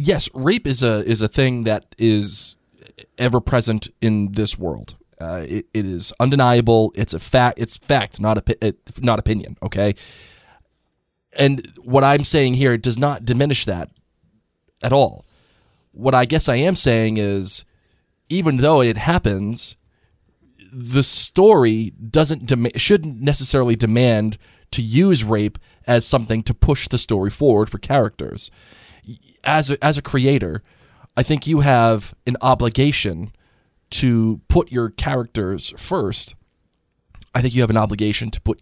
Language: English